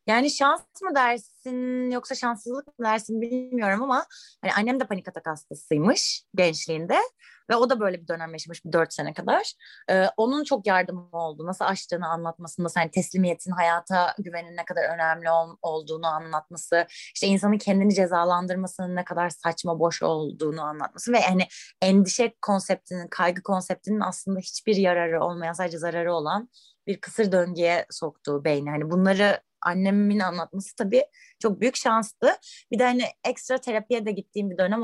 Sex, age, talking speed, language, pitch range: female, 30-49, 155 wpm, Turkish, 170-225 Hz